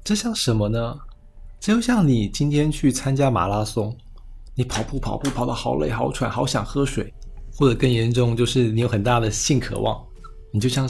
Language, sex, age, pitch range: Chinese, male, 20-39, 110-135 Hz